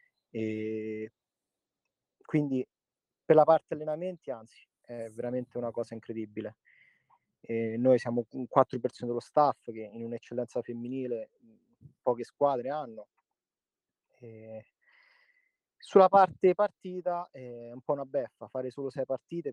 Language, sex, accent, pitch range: Italian, male, native, 120-150 Hz